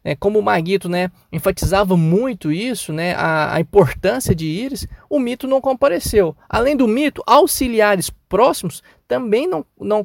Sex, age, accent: male, 20-39, Brazilian